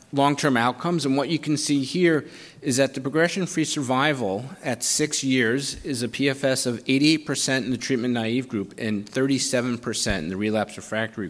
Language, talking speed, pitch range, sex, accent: English, 170 wpm, 115-140 Hz, male, American